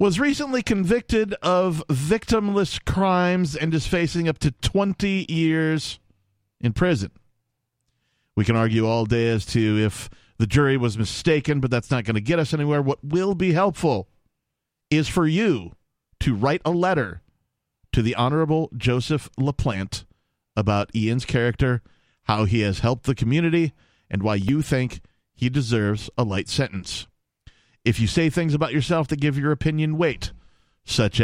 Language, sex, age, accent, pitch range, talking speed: English, male, 40-59, American, 110-150 Hz, 155 wpm